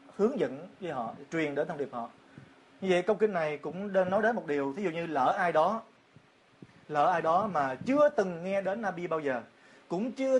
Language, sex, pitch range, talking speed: Vietnamese, male, 140-190 Hz, 230 wpm